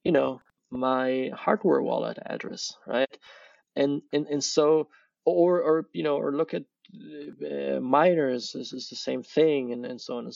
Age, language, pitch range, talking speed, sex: 20-39, English, 125-150 Hz, 175 wpm, male